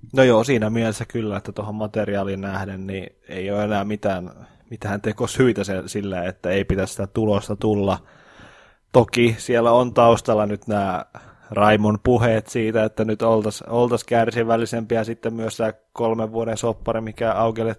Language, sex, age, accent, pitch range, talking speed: Finnish, male, 20-39, native, 100-115 Hz, 155 wpm